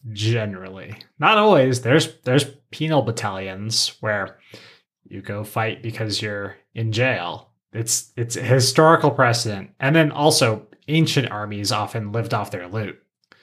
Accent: American